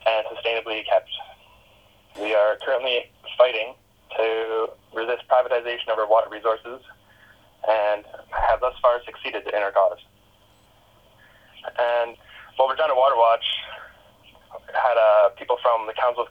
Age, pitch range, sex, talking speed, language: 10-29, 110-125 Hz, male, 130 wpm, English